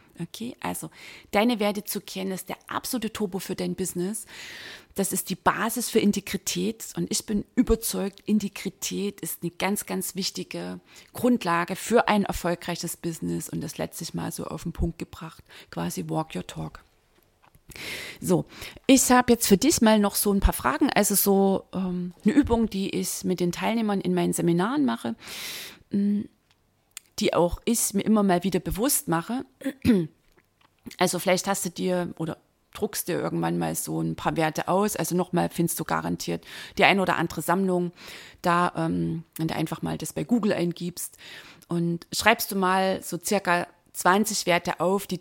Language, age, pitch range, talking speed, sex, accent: German, 30-49, 170-210 Hz, 170 wpm, female, German